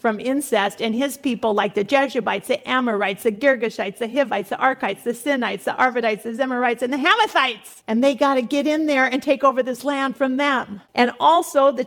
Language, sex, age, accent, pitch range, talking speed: English, female, 50-69, American, 205-255 Hz, 210 wpm